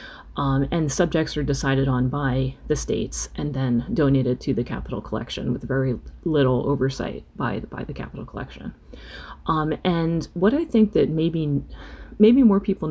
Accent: American